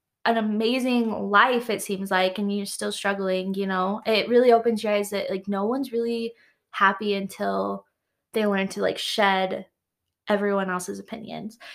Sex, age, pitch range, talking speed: female, 20-39, 200-245 Hz, 165 wpm